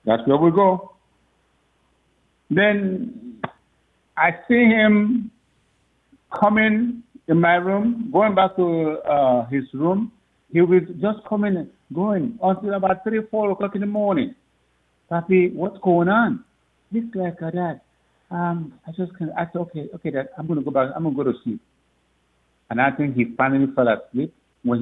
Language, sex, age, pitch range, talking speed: English, male, 60-79, 105-175 Hz, 155 wpm